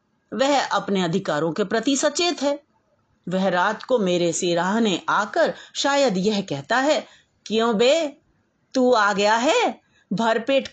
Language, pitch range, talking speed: Hindi, 200-275 Hz, 140 wpm